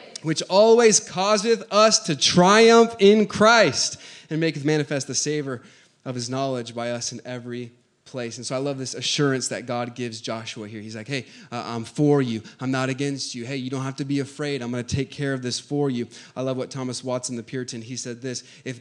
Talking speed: 220 wpm